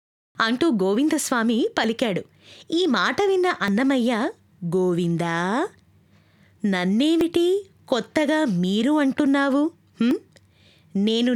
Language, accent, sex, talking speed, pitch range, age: Telugu, native, female, 70 wpm, 200-290 Hz, 20-39